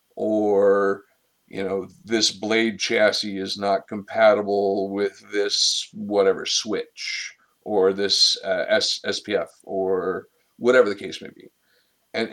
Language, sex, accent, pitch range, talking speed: English, male, American, 100-120 Hz, 120 wpm